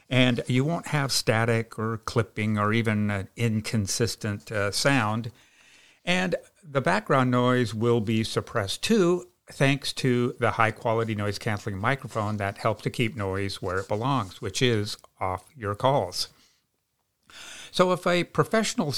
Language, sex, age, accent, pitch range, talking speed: English, male, 50-69, American, 105-130 Hz, 135 wpm